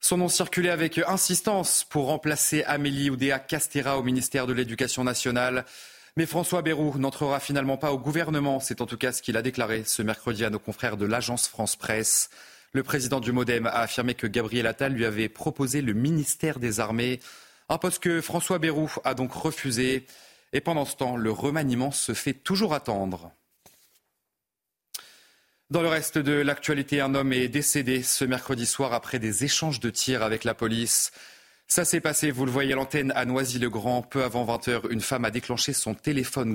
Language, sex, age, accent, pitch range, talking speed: French, male, 30-49, French, 115-145 Hz, 185 wpm